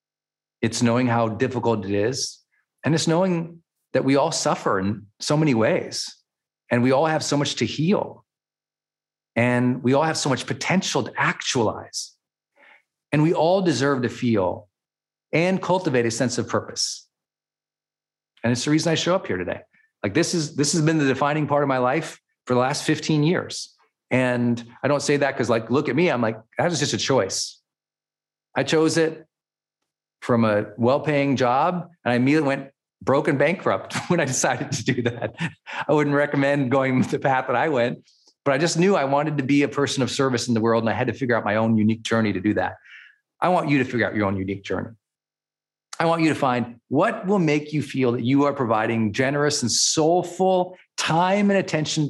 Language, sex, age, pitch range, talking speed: English, male, 40-59, 115-155 Hz, 205 wpm